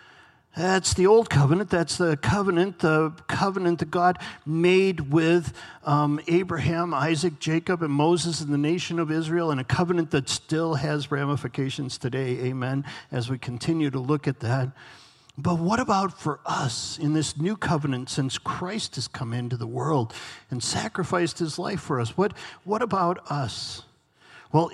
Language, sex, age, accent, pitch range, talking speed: English, male, 50-69, American, 135-175 Hz, 165 wpm